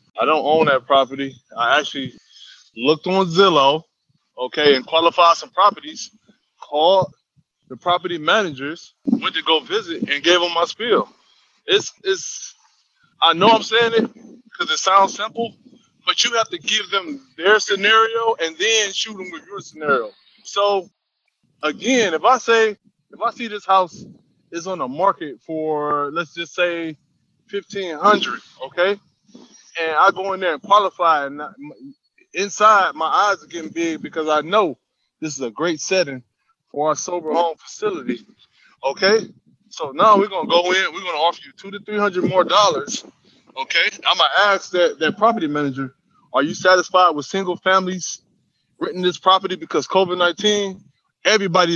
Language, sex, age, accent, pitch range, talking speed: English, male, 20-39, American, 165-225 Hz, 160 wpm